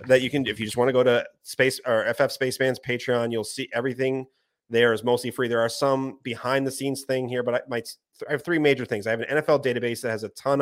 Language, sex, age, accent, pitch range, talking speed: English, male, 30-49, American, 110-130 Hz, 270 wpm